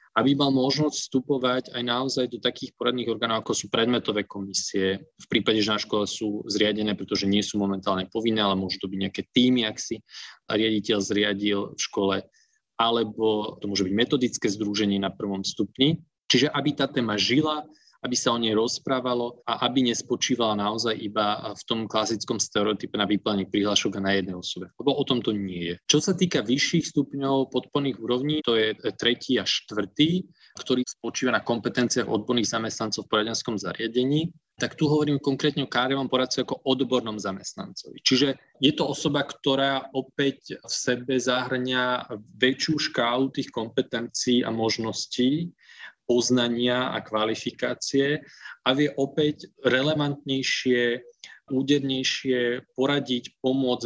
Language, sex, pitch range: Slovak, male, 110-135 Hz